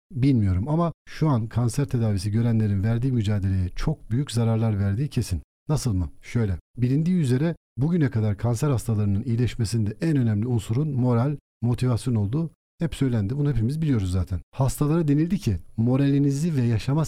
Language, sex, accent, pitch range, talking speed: Turkish, male, native, 105-140 Hz, 150 wpm